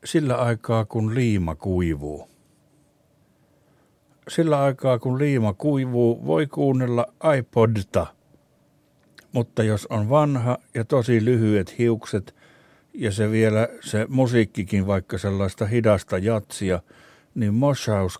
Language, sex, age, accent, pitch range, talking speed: Finnish, male, 60-79, native, 105-130 Hz, 105 wpm